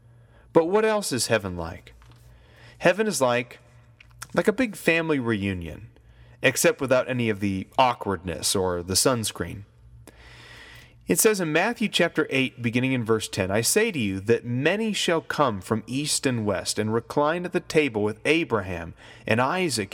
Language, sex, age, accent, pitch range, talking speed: English, male, 30-49, American, 110-160 Hz, 165 wpm